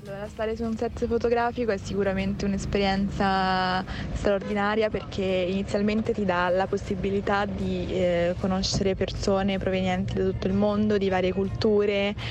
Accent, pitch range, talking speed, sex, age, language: native, 180-205 Hz, 135 wpm, female, 20-39, Italian